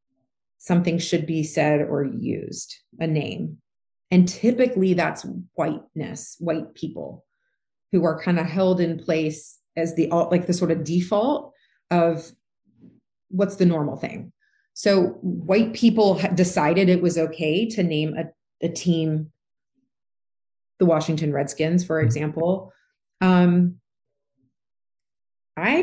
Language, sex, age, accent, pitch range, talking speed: English, female, 30-49, American, 165-215 Hz, 120 wpm